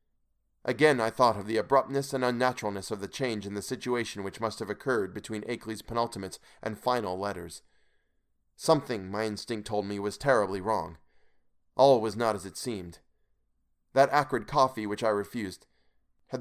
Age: 30-49